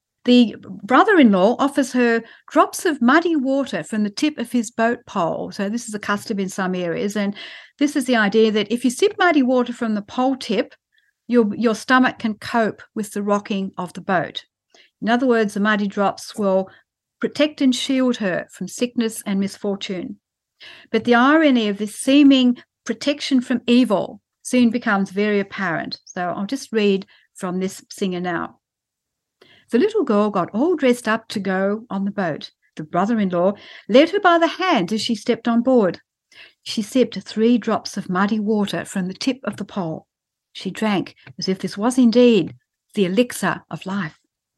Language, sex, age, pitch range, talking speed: English, female, 60-79, 200-255 Hz, 180 wpm